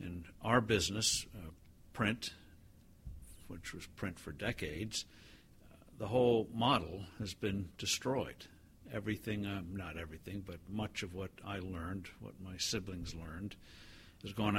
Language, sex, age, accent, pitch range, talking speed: English, male, 60-79, American, 85-105 Hz, 135 wpm